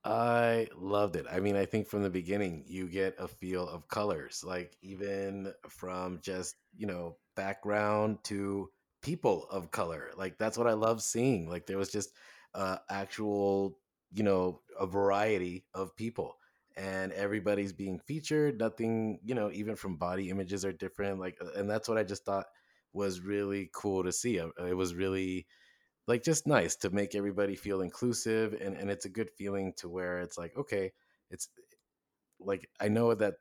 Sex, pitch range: male, 95-105 Hz